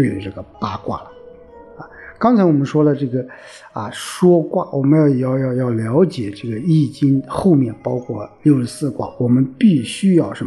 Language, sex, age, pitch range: Chinese, male, 50-69, 115-165 Hz